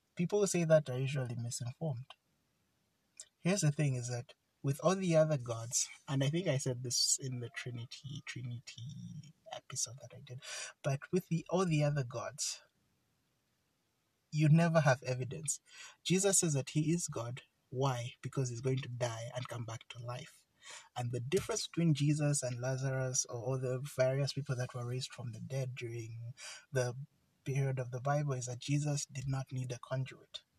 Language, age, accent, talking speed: English, 30-49, Nigerian, 180 wpm